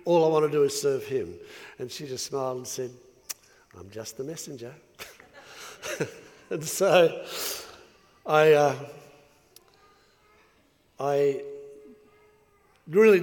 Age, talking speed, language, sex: 60-79, 110 wpm, English, male